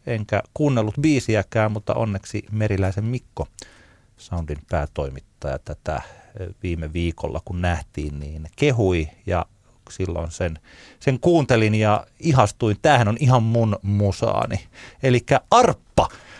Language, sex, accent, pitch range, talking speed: Finnish, male, native, 95-130 Hz, 110 wpm